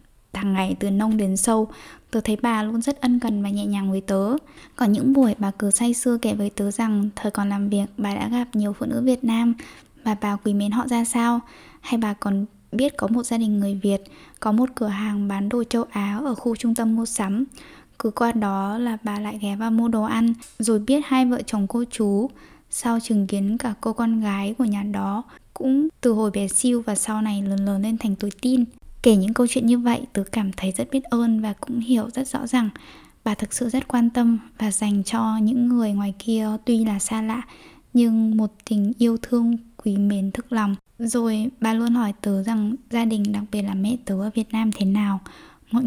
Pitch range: 205-240 Hz